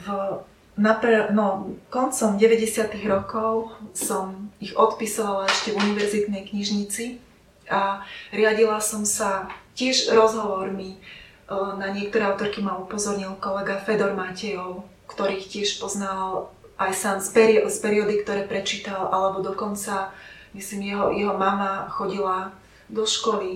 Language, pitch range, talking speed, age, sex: Slovak, 195-215 Hz, 120 wpm, 30-49, female